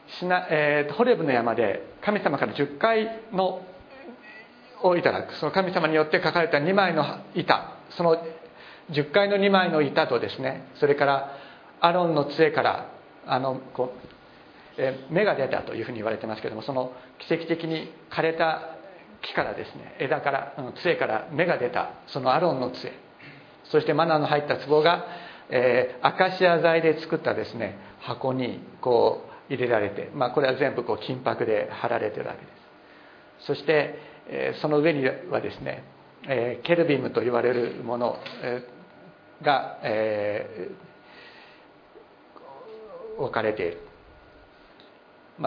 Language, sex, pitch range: Japanese, male, 140-180 Hz